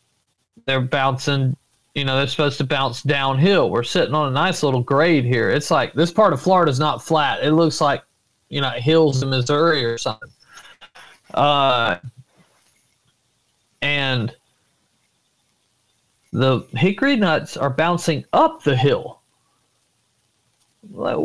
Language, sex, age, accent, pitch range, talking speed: English, male, 40-59, American, 135-175 Hz, 135 wpm